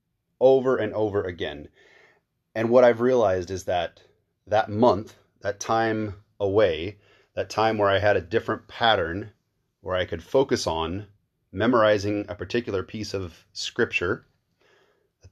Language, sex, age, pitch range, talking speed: English, male, 30-49, 95-120 Hz, 135 wpm